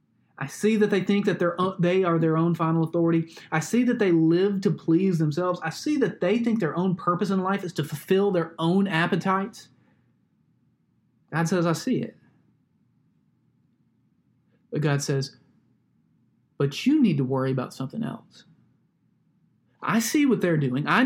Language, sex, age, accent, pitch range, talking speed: English, male, 30-49, American, 145-195 Hz, 165 wpm